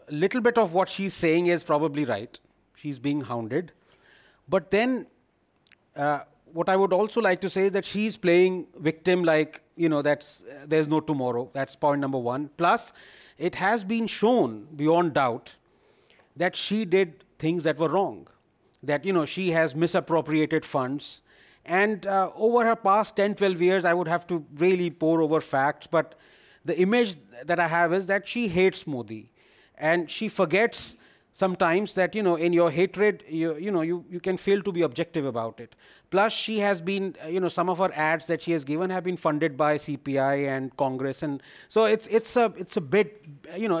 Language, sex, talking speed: English, male, 195 wpm